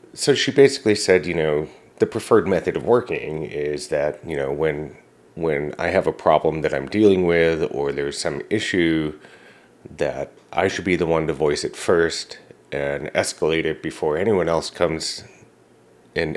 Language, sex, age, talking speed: English, male, 30-49, 170 wpm